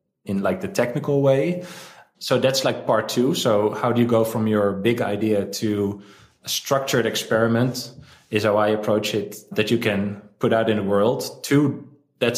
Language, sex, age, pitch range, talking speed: English, male, 20-39, 100-120 Hz, 185 wpm